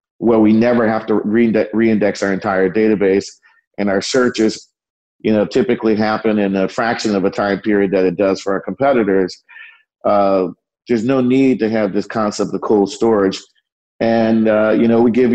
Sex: male